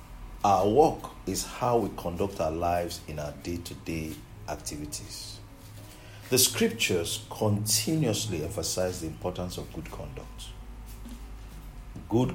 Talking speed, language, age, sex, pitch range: 105 wpm, English, 50-69, male, 85-110 Hz